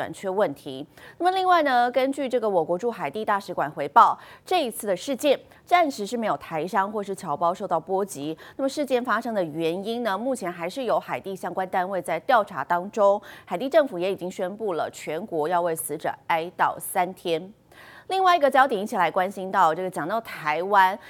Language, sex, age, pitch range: Chinese, female, 30-49, 175-260 Hz